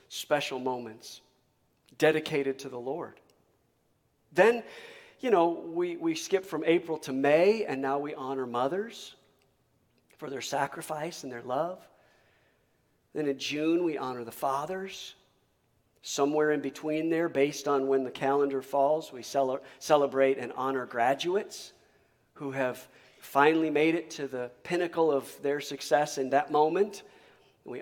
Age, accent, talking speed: 40-59, American, 140 wpm